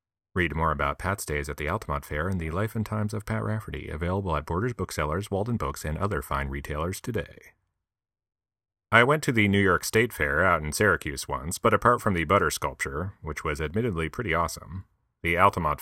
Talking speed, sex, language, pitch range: 200 wpm, male, English, 80-100 Hz